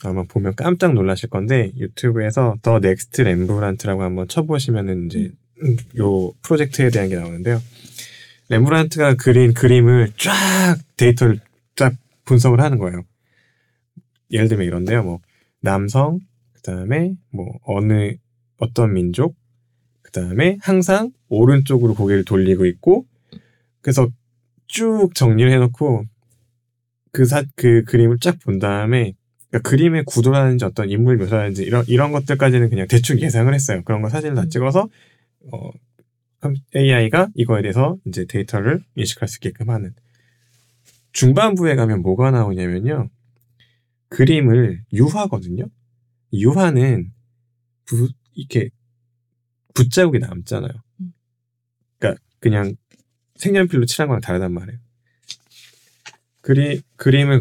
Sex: male